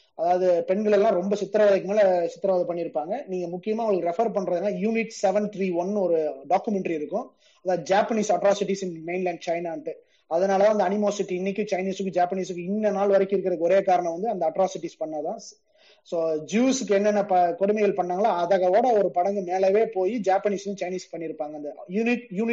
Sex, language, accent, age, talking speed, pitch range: male, Tamil, native, 20-39, 70 wpm, 175-205 Hz